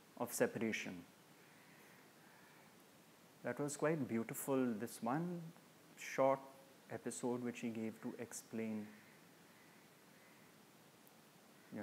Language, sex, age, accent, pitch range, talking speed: English, male, 30-49, Indian, 125-170 Hz, 75 wpm